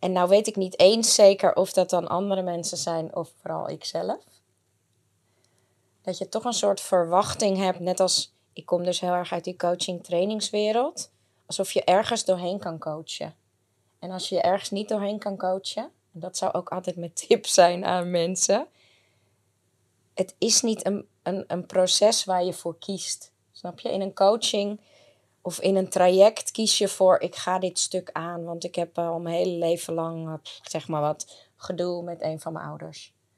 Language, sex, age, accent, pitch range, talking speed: Dutch, female, 20-39, Dutch, 160-195 Hz, 190 wpm